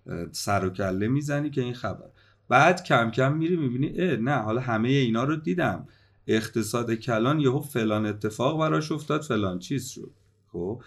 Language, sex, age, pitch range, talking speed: Persian, male, 30-49, 105-140 Hz, 160 wpm